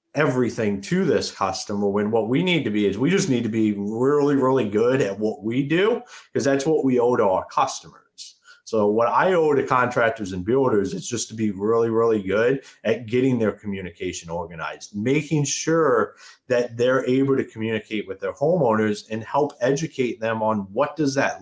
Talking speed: 195 wpm